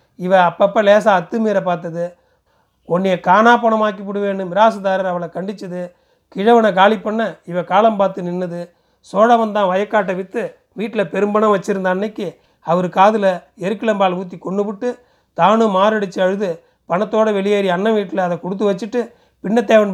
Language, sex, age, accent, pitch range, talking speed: Tamil, male, 40-59, native, 180-215 Hz, 135 wpm